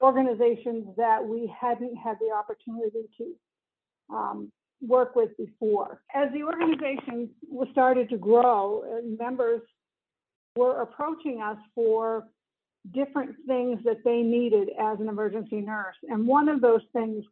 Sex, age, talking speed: female, 60-79, 135 wpm